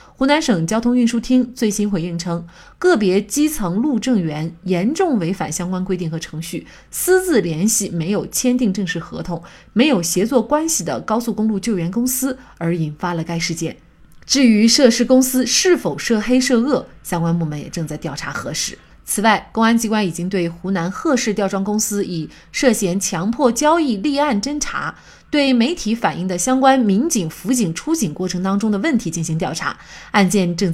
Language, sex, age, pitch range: Chinese, female, 30-49, 175-240 Hz